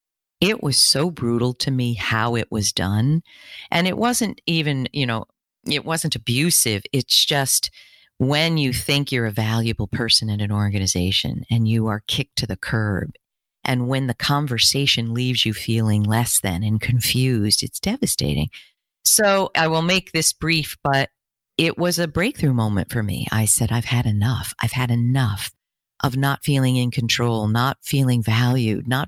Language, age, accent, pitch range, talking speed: English, 50-69, American, 115-145 Hz, 170 wpm